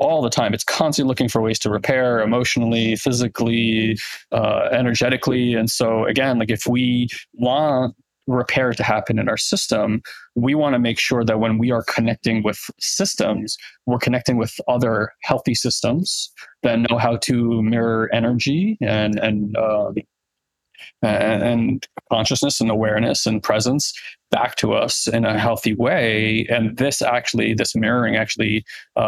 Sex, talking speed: male, 155 wpm